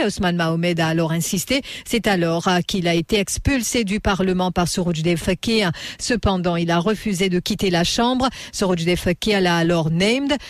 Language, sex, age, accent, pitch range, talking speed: English, female, 50-69, French, 180-225 Hz, 165 wpm